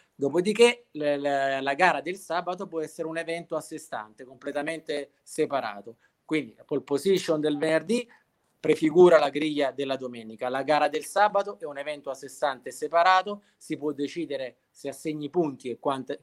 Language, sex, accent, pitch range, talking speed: Italian, male, native, 140-165 Hz, 165 wpm